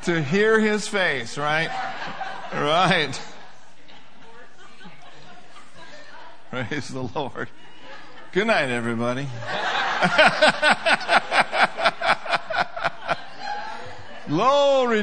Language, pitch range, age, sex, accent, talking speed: English, 140-235 Hz, 50-69, male, American, 50 wpm